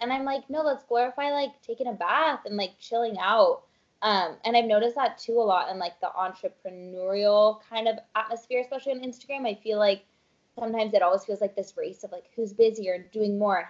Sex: female